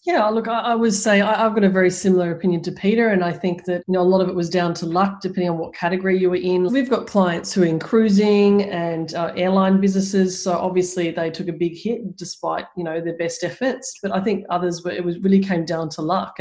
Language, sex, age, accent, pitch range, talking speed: English, female, 30-49, Australian, 170-190 Hz, 255 wpm